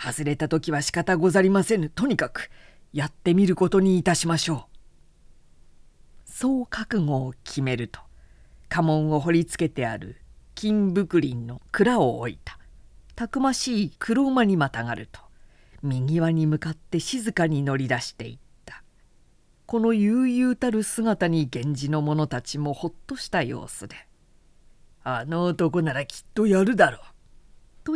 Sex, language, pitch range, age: female, Japanese, 140-205 Hz, 40-59